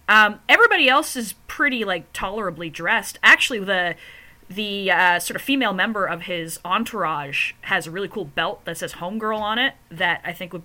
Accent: American